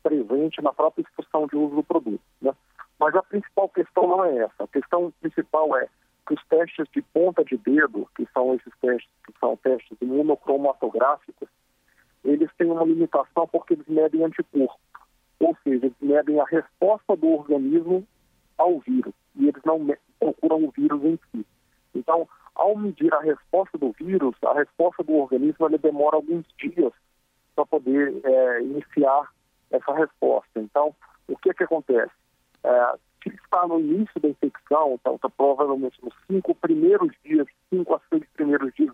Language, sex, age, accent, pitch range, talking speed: Portuguese, male, 50-69, Brazilian, 145-185 Hz, 165 wpm